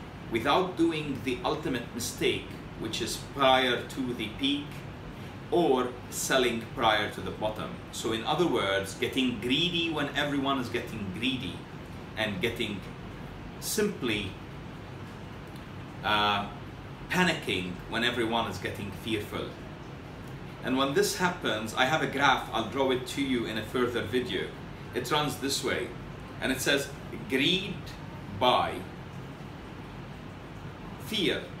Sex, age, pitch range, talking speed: male, 30-49, 115-150 Hz, 125 wpm